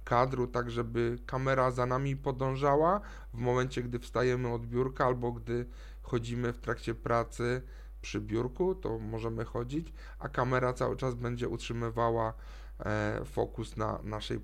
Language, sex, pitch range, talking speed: Polish, male, 115-130 Hz, 135 wpm